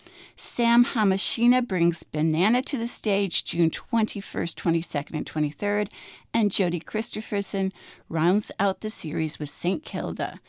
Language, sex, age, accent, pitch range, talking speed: English, female, 60-79, American, 165-220 Hz, 125 wpm